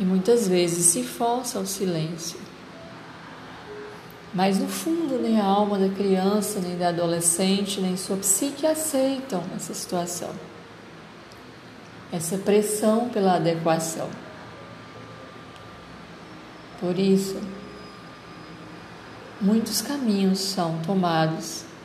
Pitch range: 175-205 Hz